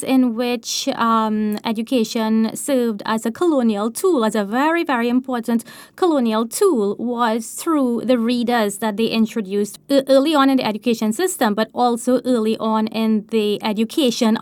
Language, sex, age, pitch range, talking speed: English, female, 20-39, 220-265 Hz, 150 wpm